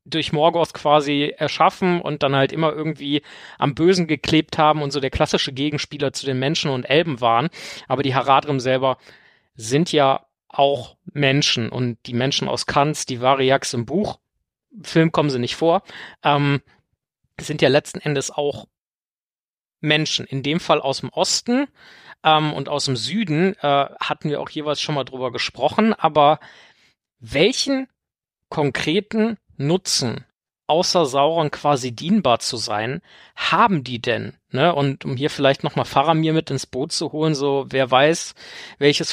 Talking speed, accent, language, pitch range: 155 wpm, German, German, 130-155 Hz